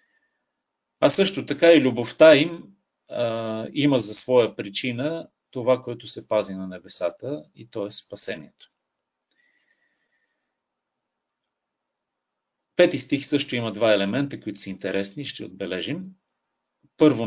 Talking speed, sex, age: 115 wpm, male, 40-59